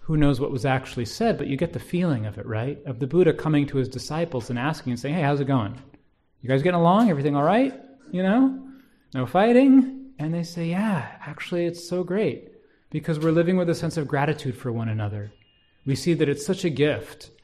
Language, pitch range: English, 125-160 Hz